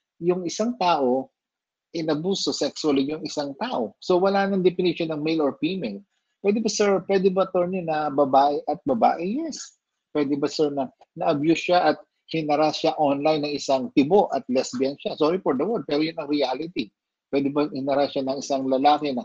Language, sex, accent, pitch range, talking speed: Filipino, male, native, 135-180 Hz, 165 wpm